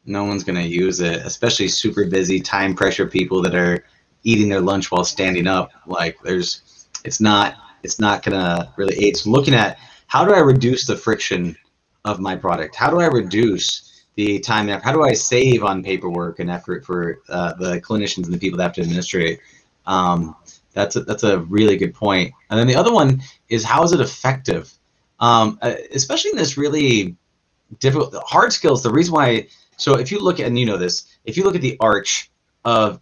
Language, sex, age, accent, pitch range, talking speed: English, male, 30-49, American, 95-130 Hz, 200 wpm